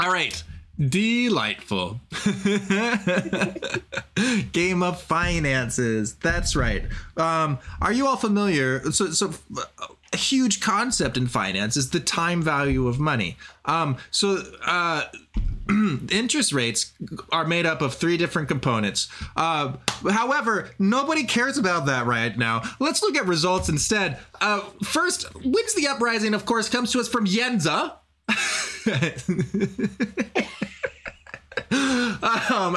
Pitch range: 130-210 Hz